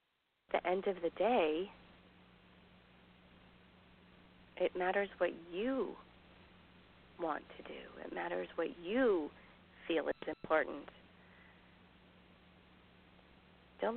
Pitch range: 150-195 Hz